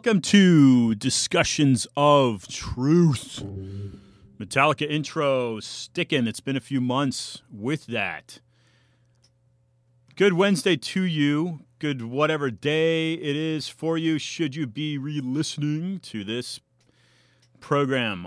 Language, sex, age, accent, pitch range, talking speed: English, male, 30-49, American, 120-150 Hz, 110 wpm